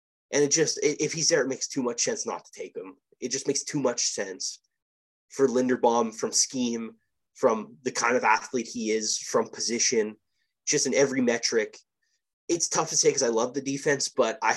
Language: English